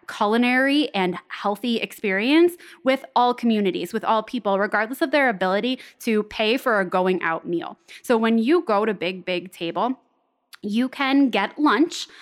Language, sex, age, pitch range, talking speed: English, female, 20-39, 200-250 Hz, 160 wpm